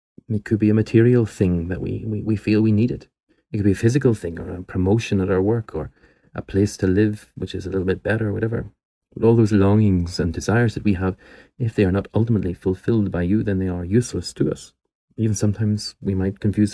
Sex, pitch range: male, 95-115 Hz